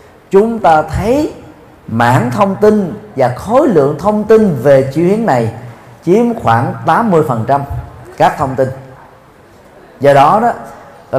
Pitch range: 125-175 Hz